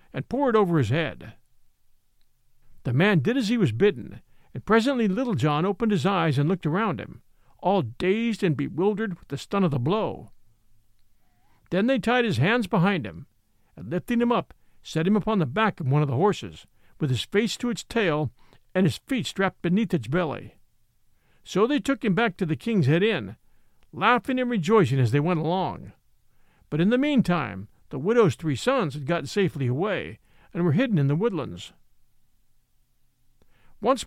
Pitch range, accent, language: 140-220 Hz, American, English